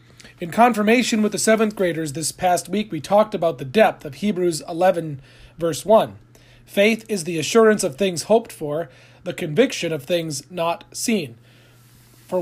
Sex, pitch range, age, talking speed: male, 150-215 Hz, 40-59, 165 wpm